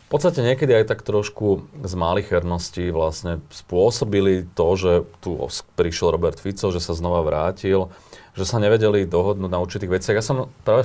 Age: 30-49